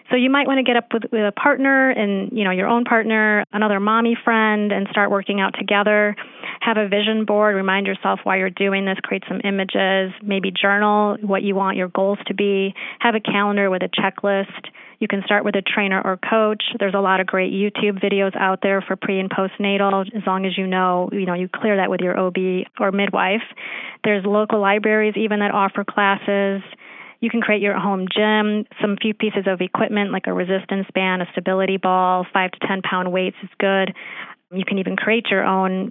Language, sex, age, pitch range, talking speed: English, female, 30-49, 190-215 Hz, 210 wpm